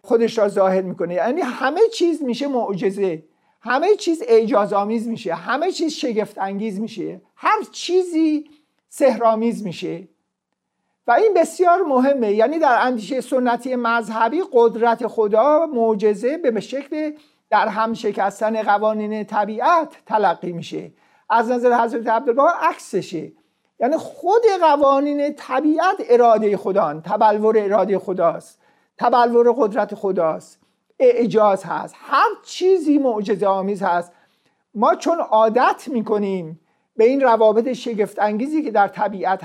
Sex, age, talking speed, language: male, 50-69, 120 wpm, Persian